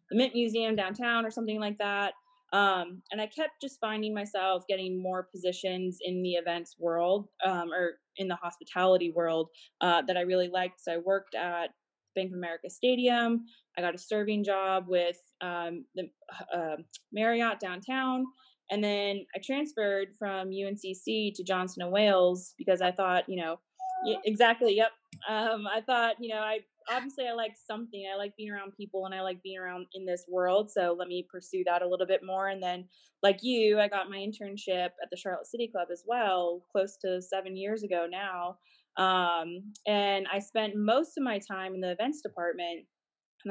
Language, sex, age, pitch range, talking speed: English, female, 20-39, 180-210 Hz, 185 wpm